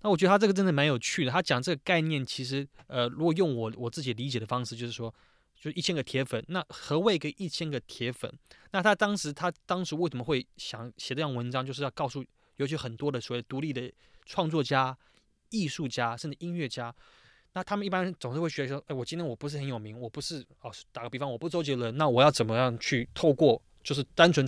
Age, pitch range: 20-39, 125-160 Hz